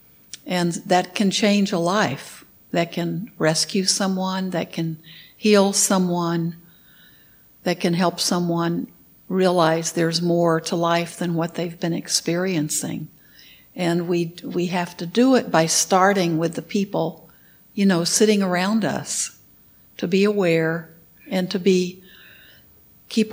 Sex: female